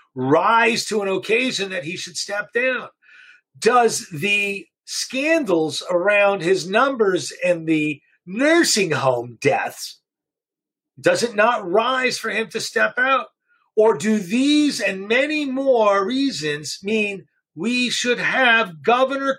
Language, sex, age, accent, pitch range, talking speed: English, male, 40-59, American, 185-245 Hz, 125 wpm